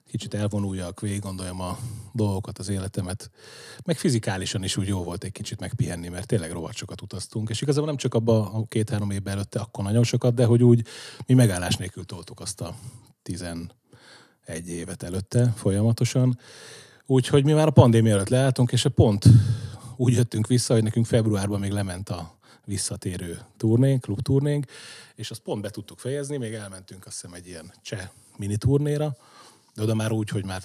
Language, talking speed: Hungarian, 170 wpm